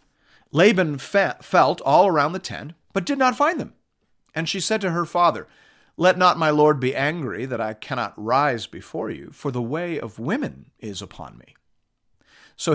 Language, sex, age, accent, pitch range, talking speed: English, male, 40-59, American, 110-155 Hz, 180 wpm